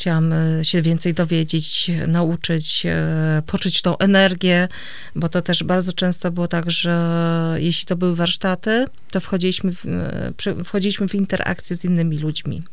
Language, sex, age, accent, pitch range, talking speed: Polish, female, 30-49, native, 165-185 Hz, 135 wpm